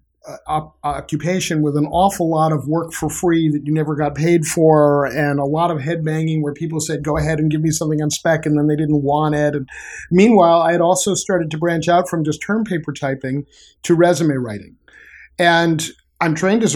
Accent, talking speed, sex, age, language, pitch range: American, 220 wpm, male, 50-69, English, 150-170 Hz